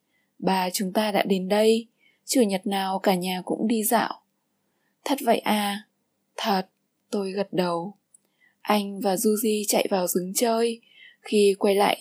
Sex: female